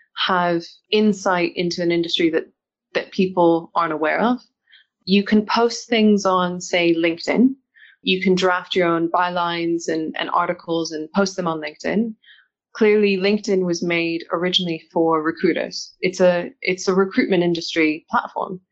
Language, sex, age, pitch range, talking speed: English, female, 20-39, 170-200 Hz, 145 wpm